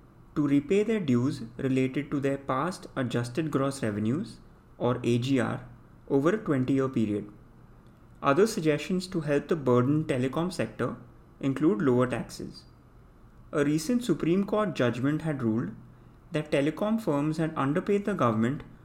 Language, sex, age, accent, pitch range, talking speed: English, male, 30-49, Indian, 125-165 Hz, 135 wpm